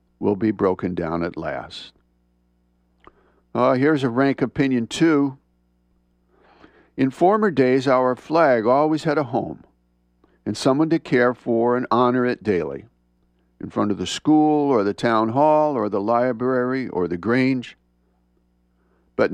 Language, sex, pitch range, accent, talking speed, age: English, male, 95-135 Hz, American, 145 wpm, 60-79